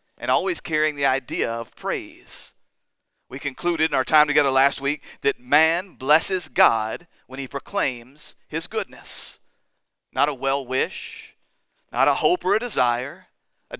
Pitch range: 135-175 Hz